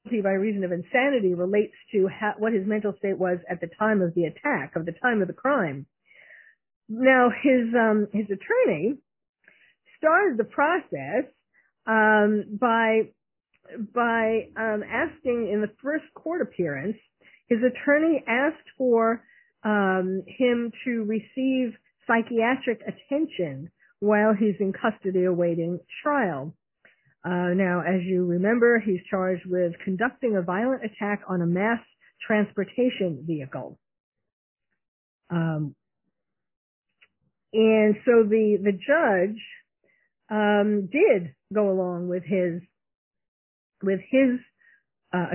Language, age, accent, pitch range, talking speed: English, 50-69, American, 185-245 Hz, 120 wpm